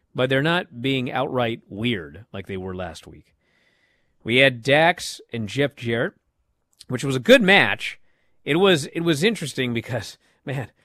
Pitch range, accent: 110-165 Hz, American